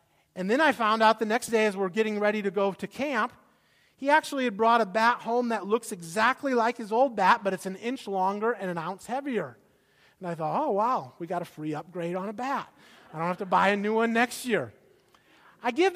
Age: 30-49